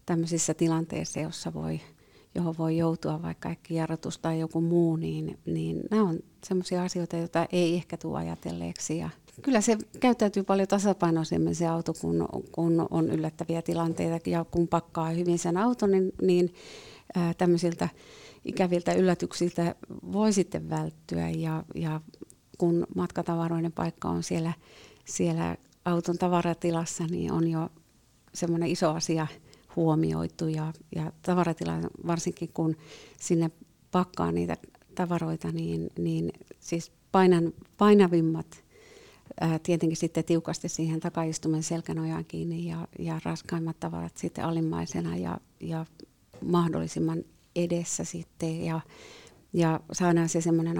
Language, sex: Finnish, female